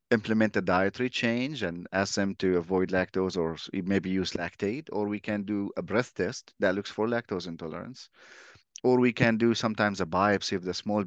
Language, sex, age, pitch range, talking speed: English, male, 30-49, 95-110 Hz, 195 wpm